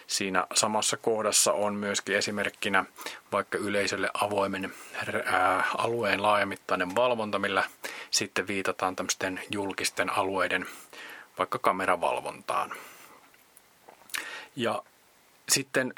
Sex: male